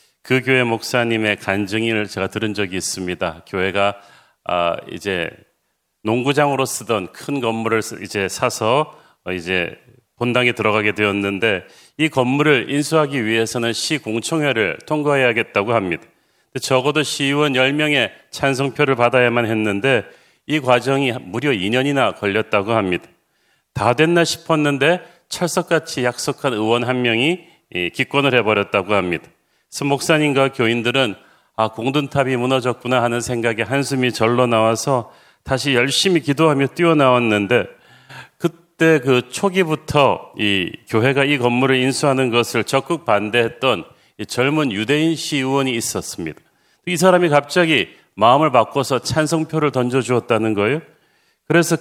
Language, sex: Korean, male